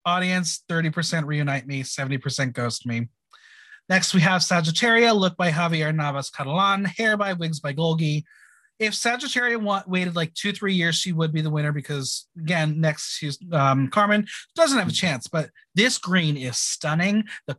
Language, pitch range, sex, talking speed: English, 140-185 Hz, male, 175 wpm